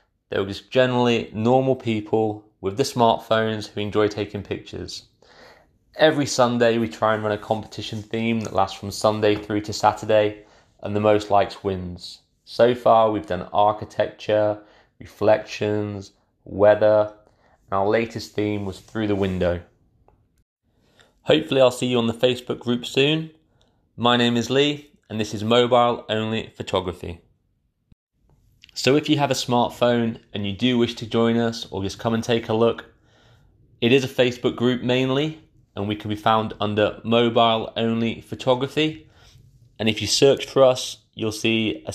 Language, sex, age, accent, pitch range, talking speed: English, male, 20-39, British, 105-125 Hz, 160 wpm